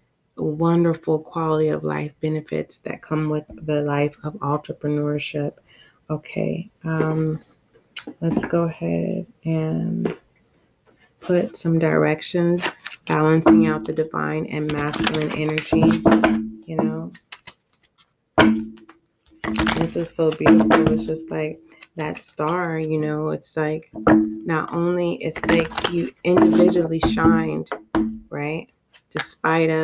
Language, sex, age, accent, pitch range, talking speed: English, female, 30-49, American, 110-165 Hz, 105 wpm